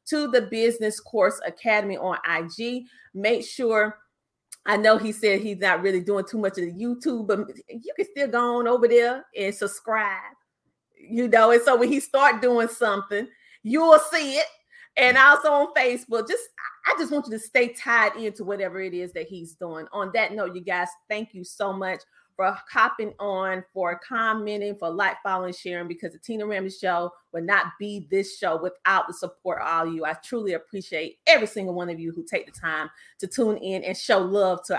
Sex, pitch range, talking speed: female, 190-255 Hz, 205 wpm